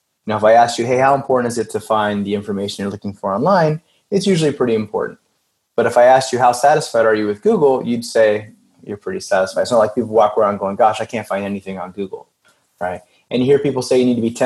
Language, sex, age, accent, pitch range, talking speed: English, male, 30-49, American, 105-140 Hz, 255 wpm